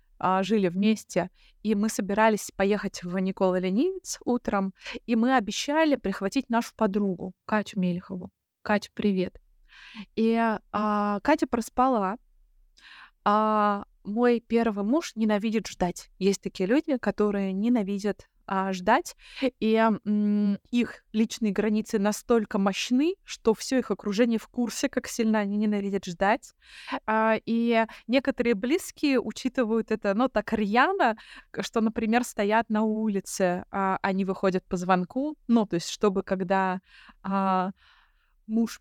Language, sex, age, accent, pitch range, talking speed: Russian, female, 20-39, native, 200-240 Hz, 120 wpm